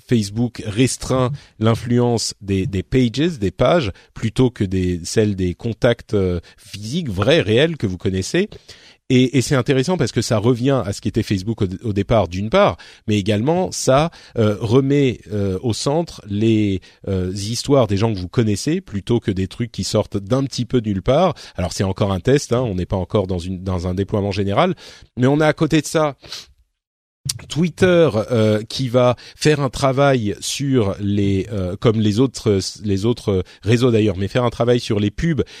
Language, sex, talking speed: French, male, 190 wpm